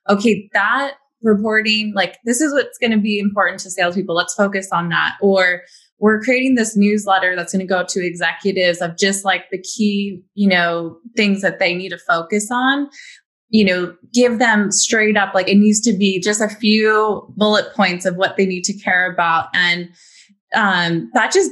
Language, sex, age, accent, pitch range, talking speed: English, female, 20-39, American, 175-205 Hz, 190 wpm